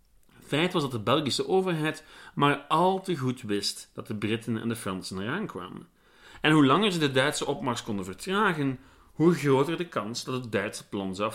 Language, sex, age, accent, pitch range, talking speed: Dutch, male, 40-59, Dutch, 110-145 Hz, 195 wpm